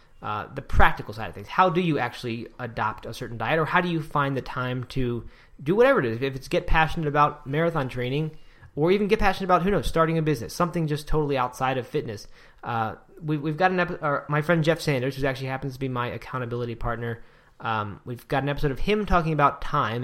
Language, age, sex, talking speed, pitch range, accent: English, 20-39, male, 235 wpm, 115-155 Hz, American